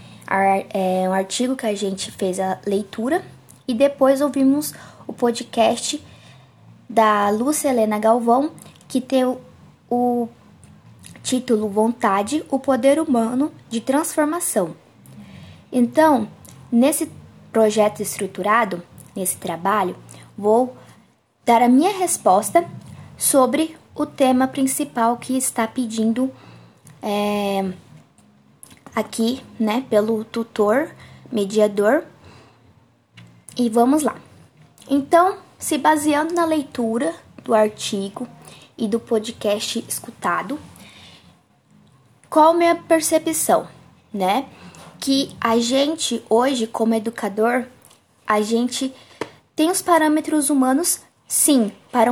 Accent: Brazilian